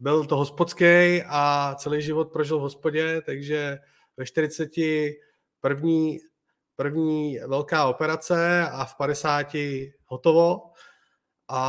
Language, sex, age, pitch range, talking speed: Czech, male, 30-49, 145-165 Hz, 110 wpm